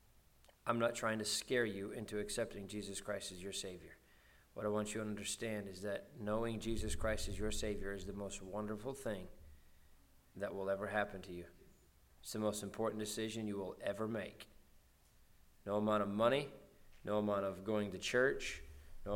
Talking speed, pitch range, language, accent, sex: 180 wpm, 95-105 Hz, English, American, male